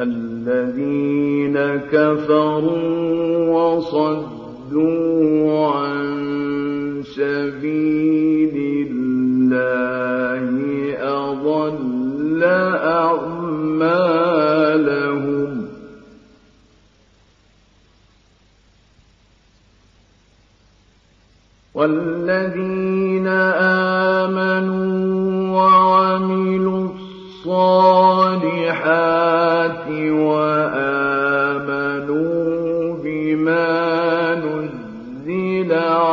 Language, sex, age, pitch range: Arabic, male, 50-69, 140-185 Hz